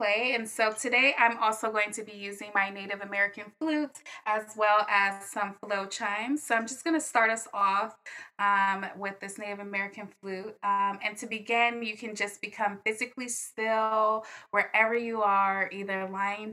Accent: American